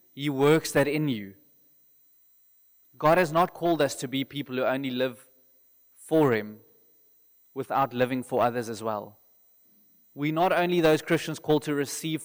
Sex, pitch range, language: male, 125-160 Hz, English